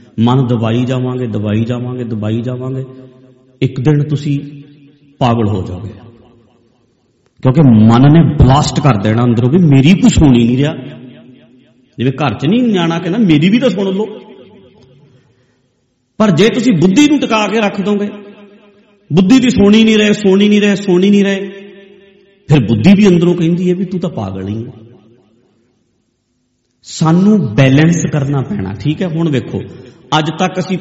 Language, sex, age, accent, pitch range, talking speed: English, male, 50-69, Indian, 120-165 Hz, 85 wpm